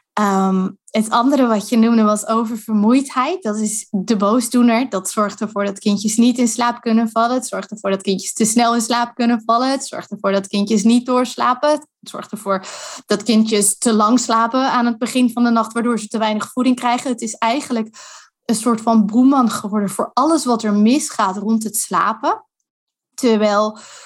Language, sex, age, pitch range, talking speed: Dutch, female, 20-39, 210-250 Hz, 190 wpm